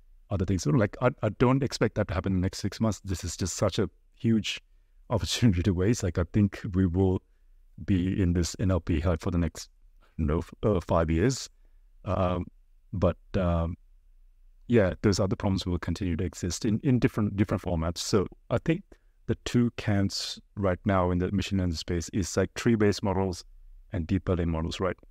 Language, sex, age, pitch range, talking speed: English, male, 30-49, 85-105 Hz, 195 wpm